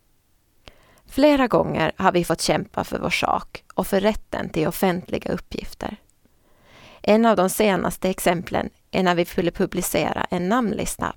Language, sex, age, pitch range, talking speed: Swedish, female, 30-49, 165-215 Hz, 145 wpm